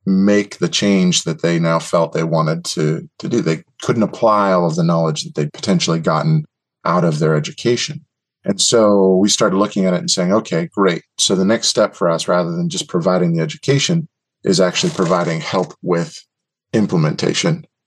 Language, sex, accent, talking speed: English, male, American, 190 wpm